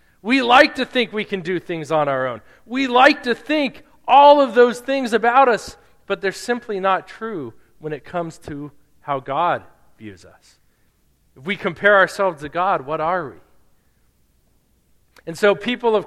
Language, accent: English, American